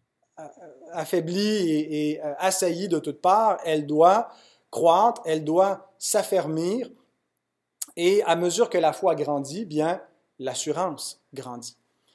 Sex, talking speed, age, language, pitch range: male, 115 wpm, 30-49, French, 150-190 Hz